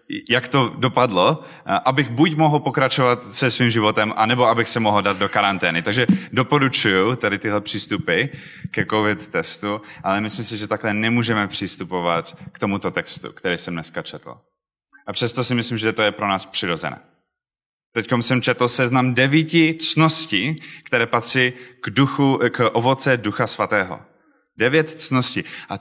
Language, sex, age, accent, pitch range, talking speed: Czech, male, 20-39, native, 110-135 Hz, 155 wpm